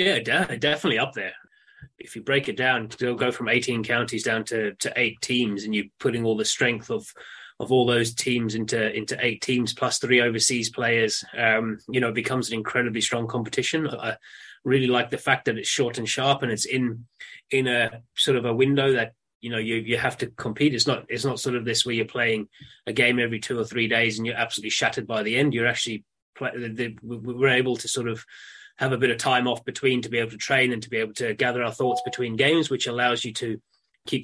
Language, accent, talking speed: English, British, 230 wpm